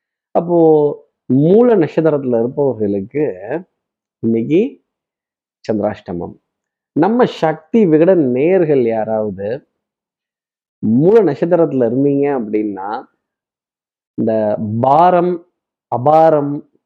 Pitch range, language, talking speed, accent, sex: 120-155 Hz, Tamil, 65 wpm, native, male